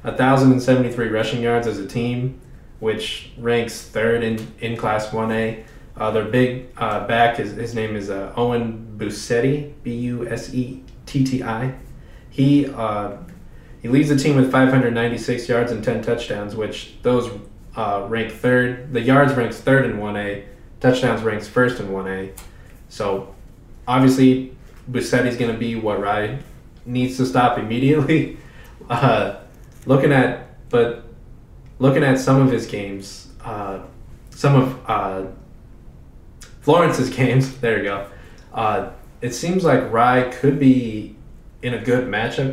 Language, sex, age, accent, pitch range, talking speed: English, male, 20-39, American, 110-130 Hz, 135 wpm